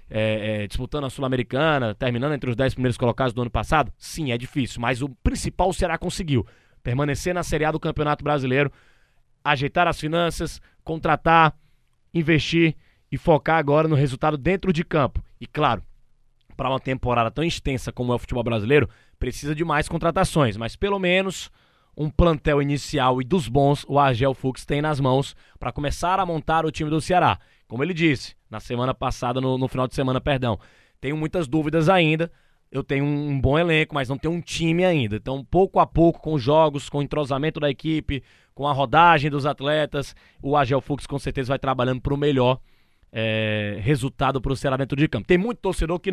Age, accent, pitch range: 20-39, Brazilian, 130-160 Hz